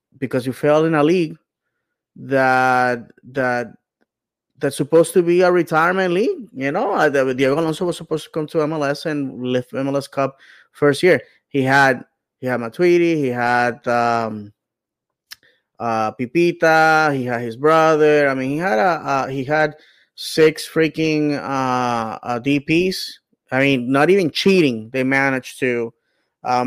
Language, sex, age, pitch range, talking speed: English, male, 20-39, 120-145 Hz, 150 wpm